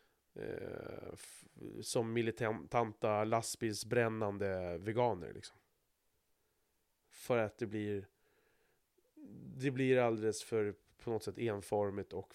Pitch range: 115-150 Hz